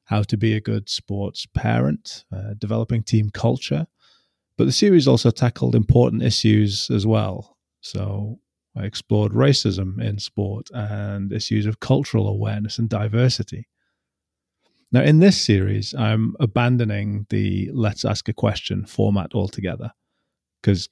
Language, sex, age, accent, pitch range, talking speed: English, male, 30-49, British, 105-125 Hz, 135 wpm